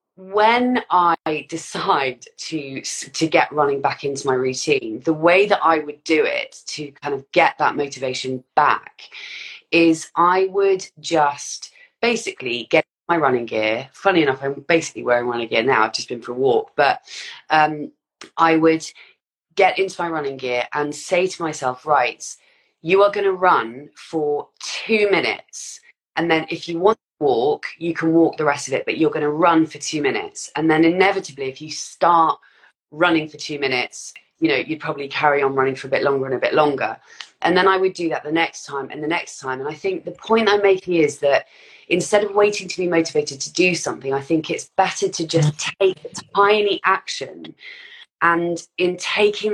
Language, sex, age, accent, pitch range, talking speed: English, female, 30-49, British, 145-190 Hz, 195 wpm